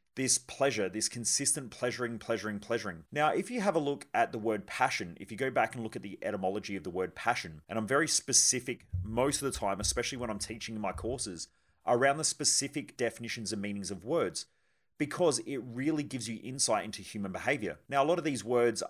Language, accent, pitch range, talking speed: English, Australian, 105-135 Hz, 215 wpm